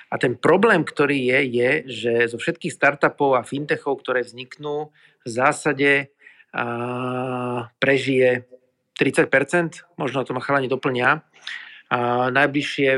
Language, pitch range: Slovak, 125-145 Hz